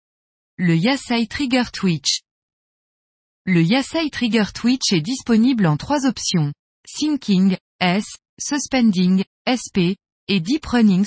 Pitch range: 180-245 Hz